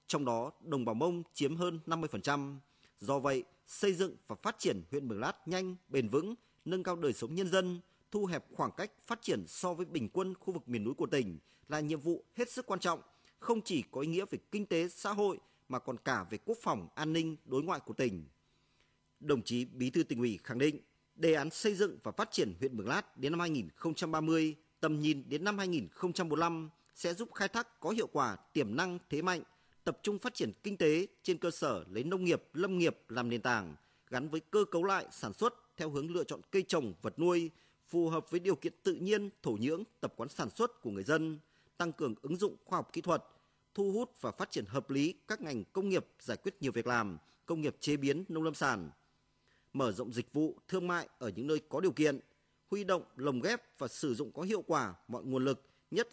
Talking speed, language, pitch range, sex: 230 wpm, Vietnamese, 140-190 Hz, male